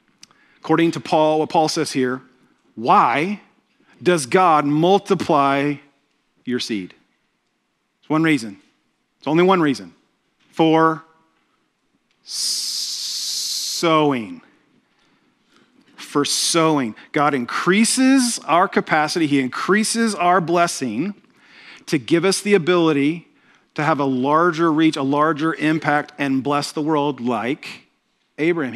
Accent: American